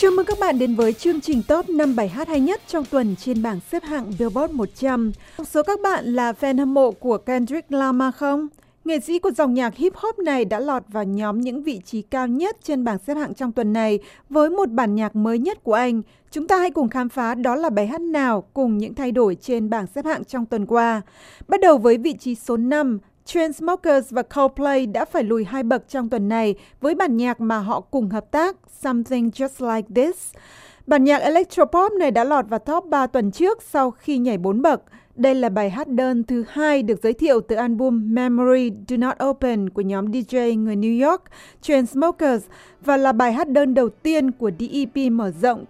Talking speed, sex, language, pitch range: 220 wpm, female, Vietnamese, 230-295 Hz